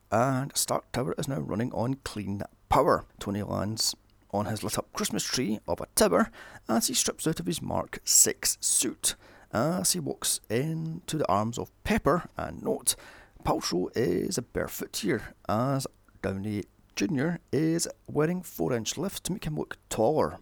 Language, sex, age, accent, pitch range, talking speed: English, male, 30-49, British, 100-145 Hz, 170 wpm